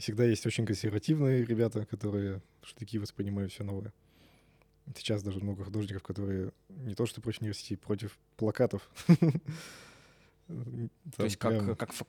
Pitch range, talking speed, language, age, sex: 100-125 Hz, 125 wpm, Russian, 20-39, male